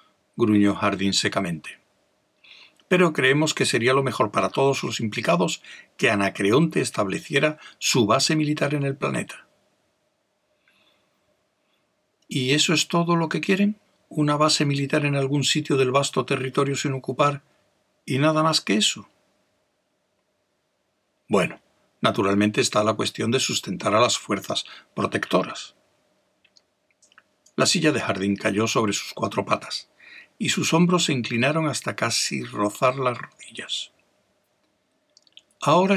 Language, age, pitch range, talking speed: Spanish, 60-79, 120-165 Hz, 125 wpm